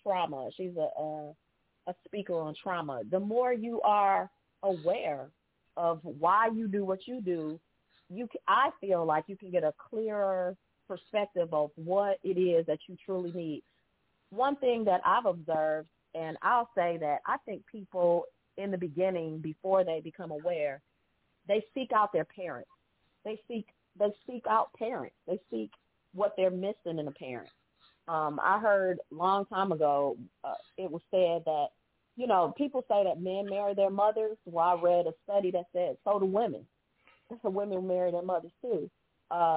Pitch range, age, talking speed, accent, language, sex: 165-200 Hz, 40-59, 175 wpm, American, English, female